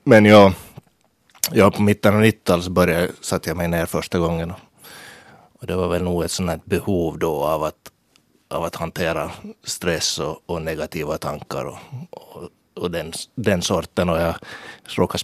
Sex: male